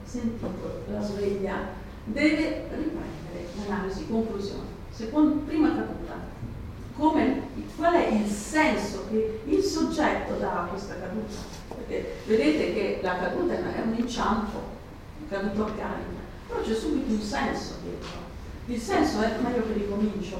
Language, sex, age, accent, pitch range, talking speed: Italian, female, 40-59, native, 195-250 Hz, 135 wpm